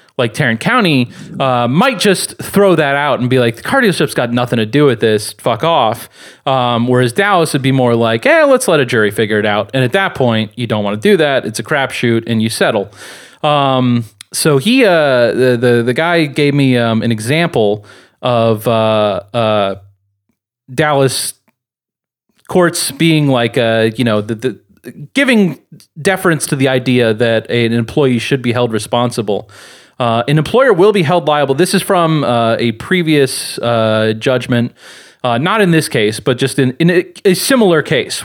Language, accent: English, American